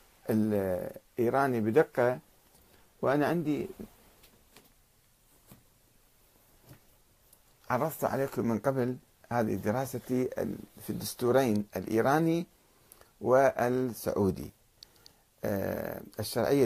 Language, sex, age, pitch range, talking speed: Arabic, male, 50-69, 110-155 Hz, 55 wpm